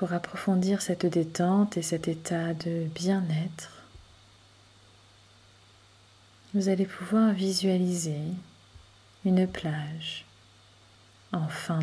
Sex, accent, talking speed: female, French, 85 wpm